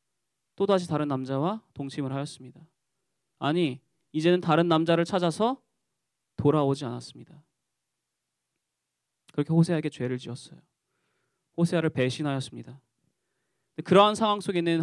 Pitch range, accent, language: 130-175 Hz, native, Korean